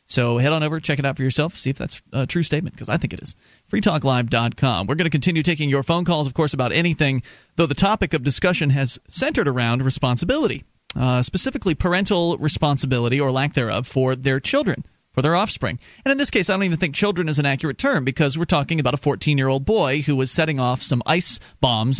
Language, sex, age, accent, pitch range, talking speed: English, male, 30-49, American, 130-175 Hz, 230 wpm